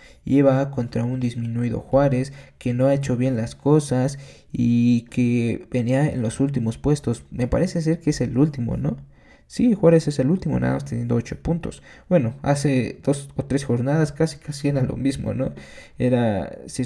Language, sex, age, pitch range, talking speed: Spanish, male, 20-39, 120-140 Hz, 180 wpm